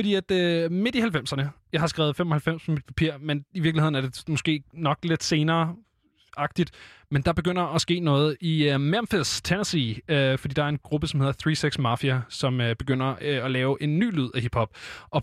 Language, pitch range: Danish, 135-170 Hz